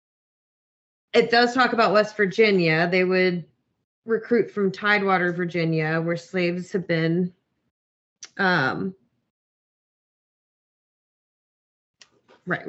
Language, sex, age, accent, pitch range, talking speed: English, female, 20-39, American, 170-215 Hz, 85 wpm